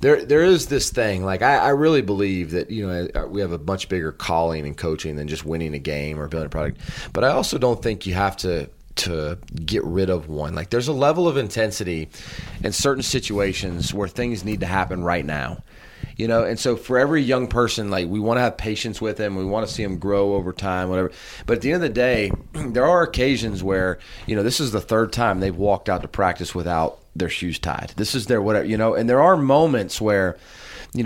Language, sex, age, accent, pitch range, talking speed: English, male, 30-49, American, 95-120 Hz, 240 wpm